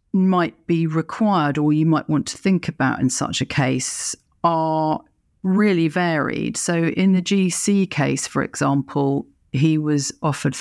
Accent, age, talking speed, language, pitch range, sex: British, 50-69, 155 wpm, English, 130-160 Hz, female